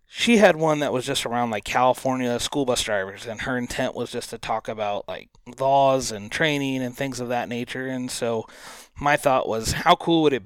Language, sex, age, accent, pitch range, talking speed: English, male, 30-49, American, 120-145 Hz, 220 wpm